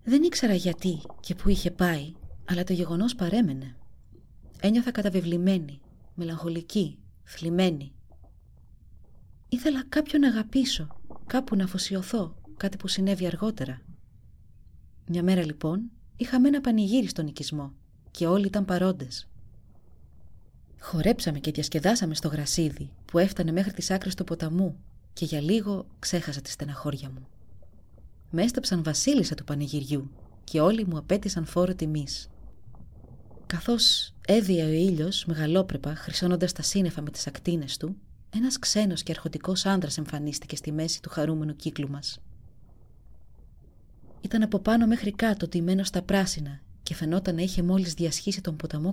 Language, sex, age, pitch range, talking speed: Greek, female, 30-49, 145-190 Hz, 145 wpm